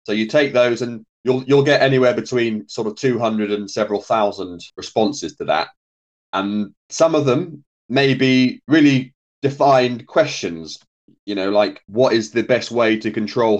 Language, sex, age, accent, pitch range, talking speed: English, male, 30-49, British, 105-130 Hz, 170 wpm